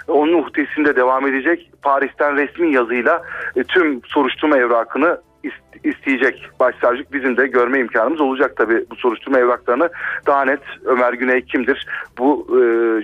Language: Turkish